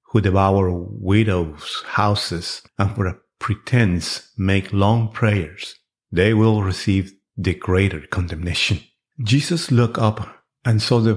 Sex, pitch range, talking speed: male, 95-115 Hz, 125 wpm